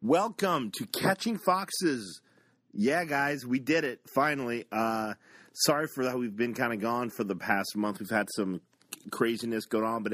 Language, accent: English, American